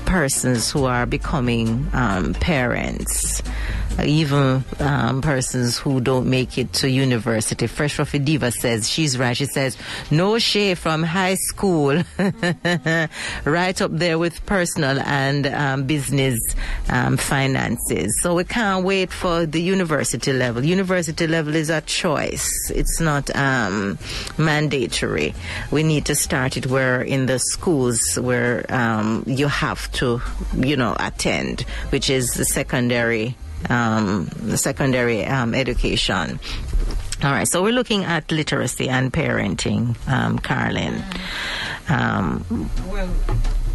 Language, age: English, 40-59